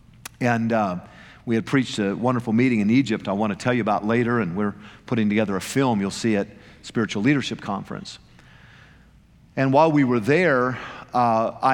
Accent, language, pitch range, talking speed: American, English, 115-150 Hz, 180 wpm